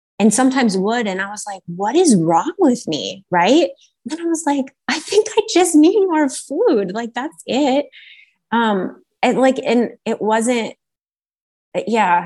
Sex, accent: female, American